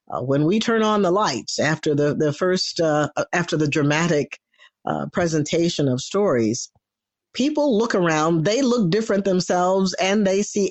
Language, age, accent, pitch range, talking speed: English, 50-69, American, 135-180 Hz, 160 wpm